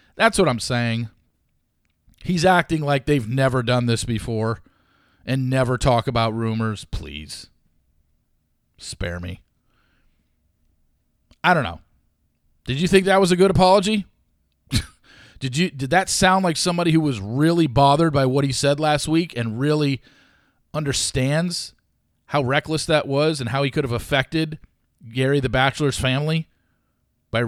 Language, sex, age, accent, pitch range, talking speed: English, male, 40-59, American, 125-190 Hz, 145 wpm